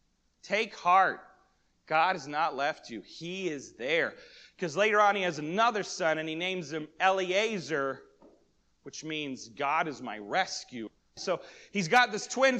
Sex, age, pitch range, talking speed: male, 30-49, 165-230 Hz, 155 wpm